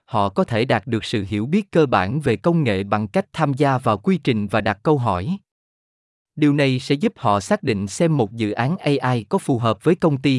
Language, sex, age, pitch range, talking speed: Vietnamese, male, 20-39, 110-155 Hz, 245 wpm